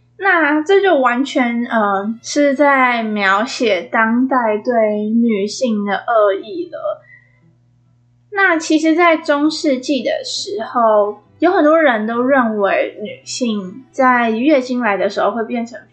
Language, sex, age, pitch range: Chinese, female, 10-29, 225-305 Hz